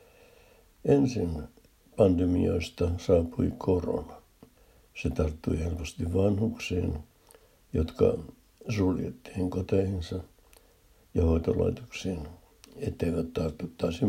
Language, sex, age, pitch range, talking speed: Finnish, male, 60-79, 85-100 Hz, 65 wpm